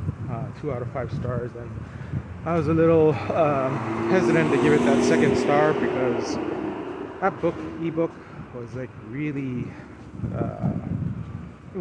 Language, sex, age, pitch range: English, male, 30-49, 130-155 Hz